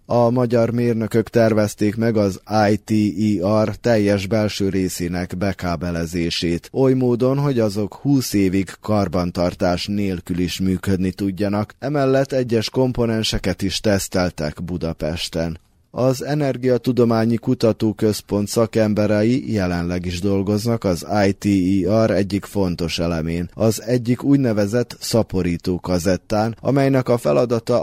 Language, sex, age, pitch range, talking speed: Hungarian, male, 20-39, 95-115 Hz, 105 wpm